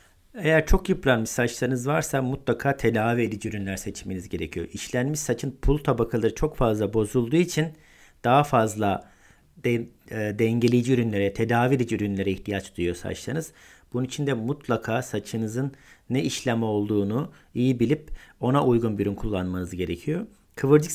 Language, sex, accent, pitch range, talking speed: Turkish, male, native, 105-150 Hz, 140 wpm